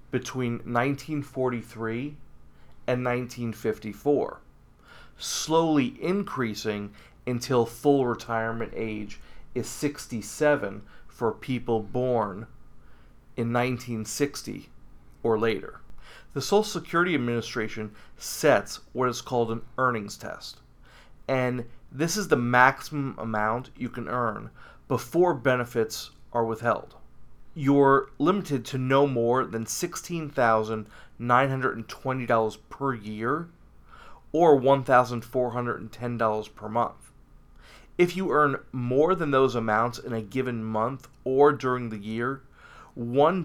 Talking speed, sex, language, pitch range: 115 wpm, male, English, 115-140 Hz